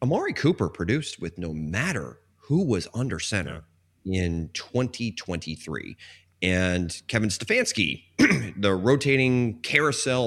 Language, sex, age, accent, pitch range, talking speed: English, male, 30-49, American, 90-135 Hz, 105 wpm